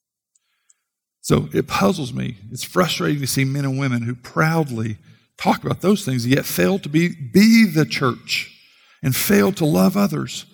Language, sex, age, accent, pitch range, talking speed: English, male, 50-69, American, 130-195 Hz, 165 wpm